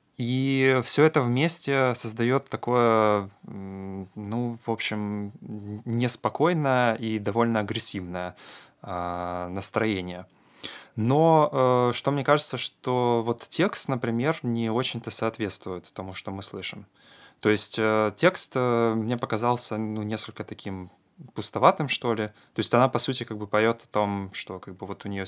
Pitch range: 100-125 Hz